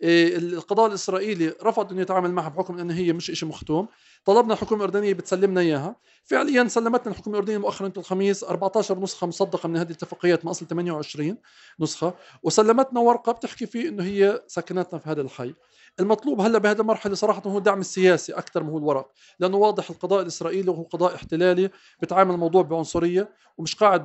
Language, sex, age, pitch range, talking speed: Arabic, male, 40-59, 175-220 Hz, 170 wpm